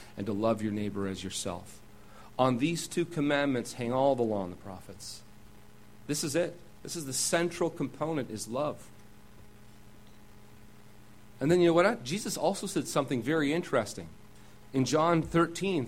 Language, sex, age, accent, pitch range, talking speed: English, male, 40-59, American, 105-155 Hz, 165 wpm